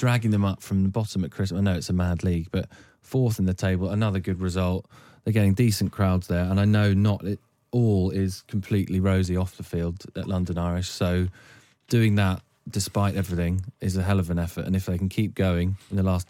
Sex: male